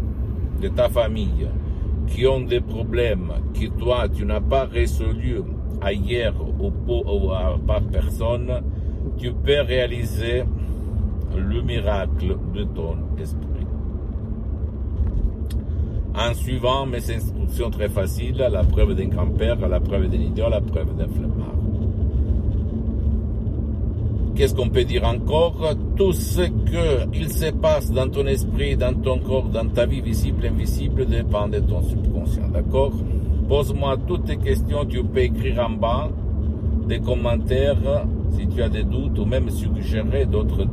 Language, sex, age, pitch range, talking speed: Italian, male, 60-79, 75-105 Hz, 135 wpm